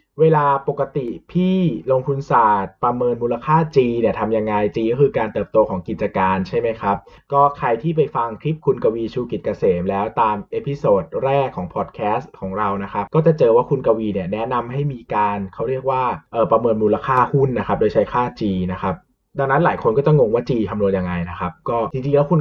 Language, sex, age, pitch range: Thai, male, 20-39, 105-140 Hz